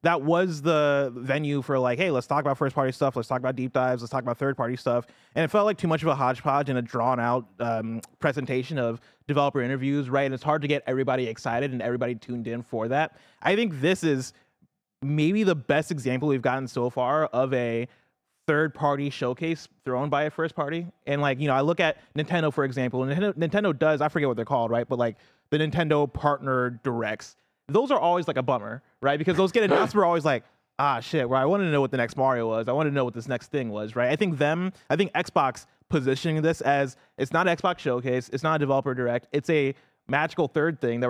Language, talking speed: English, 240 wpm